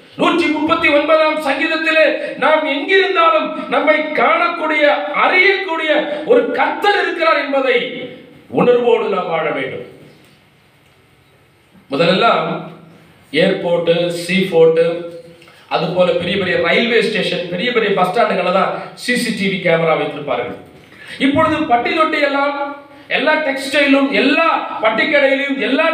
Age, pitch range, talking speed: 40-59, 235-320 Hz, 60 wpm